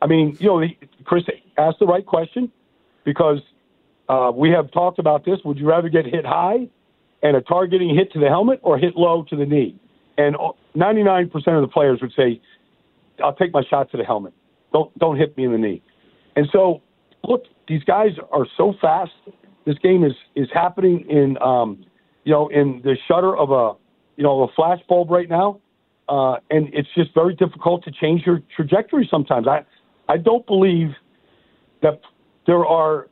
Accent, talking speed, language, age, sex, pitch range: American, 185 wpm, English, 50-69, male, 145-185 Hz